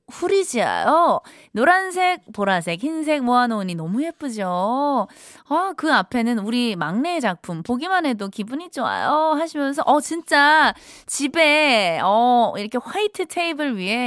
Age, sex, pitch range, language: 20-39, female, 200-310 Hz, Korean